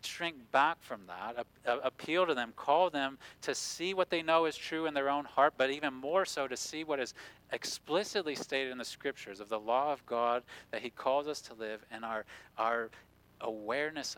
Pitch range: 115-140 Hz